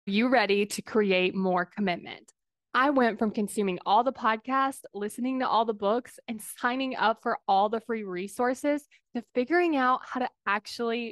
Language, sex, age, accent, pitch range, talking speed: English, female, 20-39, American, 205-265 Hz, 175 wpm